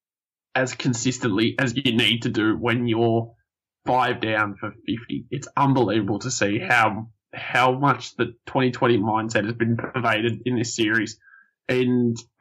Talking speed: 145 wpm